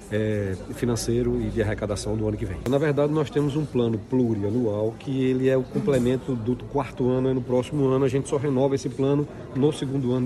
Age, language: 40-59, Portuguese